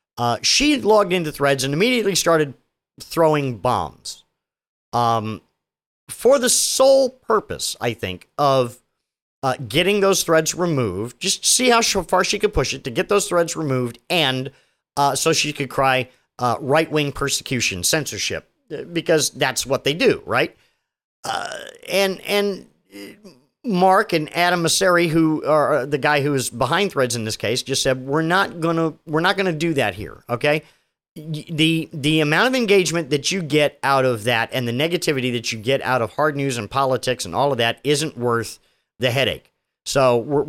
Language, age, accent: English, 50-69, American